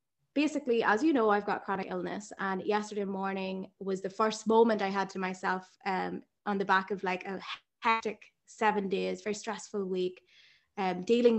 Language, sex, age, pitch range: English, female, 20-39, 190-220 Hz